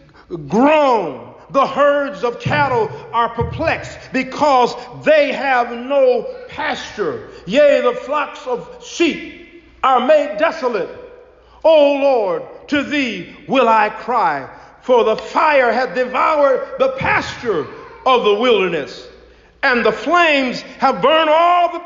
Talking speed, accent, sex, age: 120 wpm, American, male, 50-69